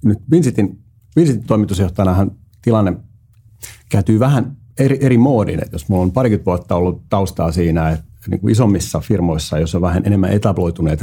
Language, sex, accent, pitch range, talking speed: Finnish, male, native, 85-110 Hz, 150 wpm